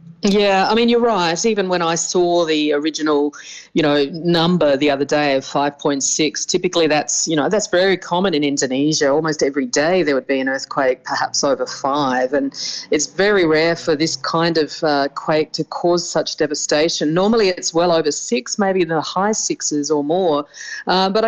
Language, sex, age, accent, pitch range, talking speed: English, female, 30-49, Australian, 155-195 Hz, 185 wpm